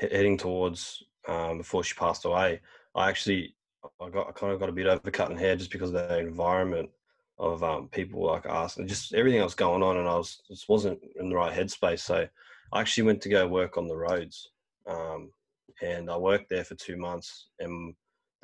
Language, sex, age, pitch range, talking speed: English, male, 20-39, 85-100 Hz, 210 wpm